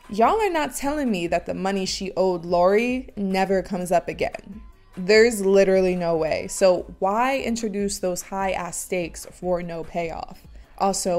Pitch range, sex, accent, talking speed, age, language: 180-240 Hz, female, American, 160 wpm, 20-39, English